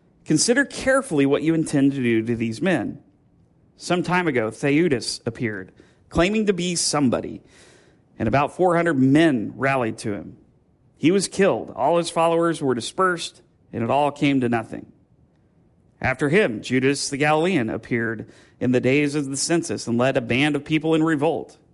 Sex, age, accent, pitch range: male, 40-59, American, 120-170 Hz